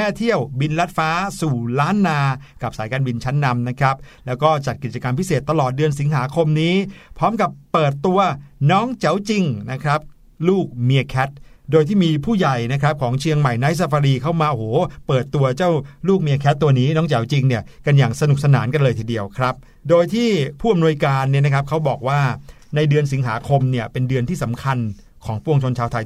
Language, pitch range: Thai, 130-160 Hz